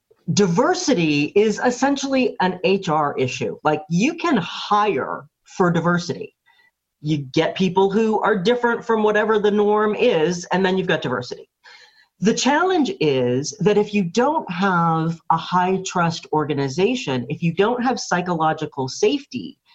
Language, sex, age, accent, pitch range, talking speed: English, female, 40-59, American, 150-215 Hz, 140 wpm